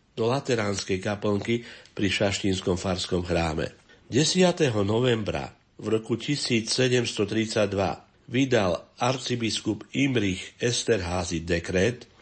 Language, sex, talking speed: Slovak, male, 85 wpm